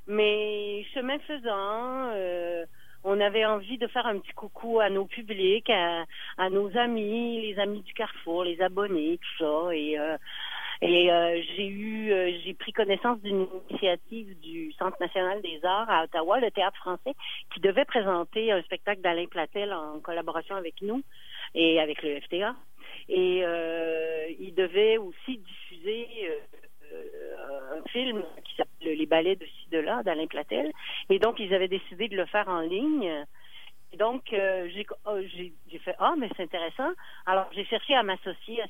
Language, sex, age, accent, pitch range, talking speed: French, female, 40-59, French, 175-220 Hz, 170 wpm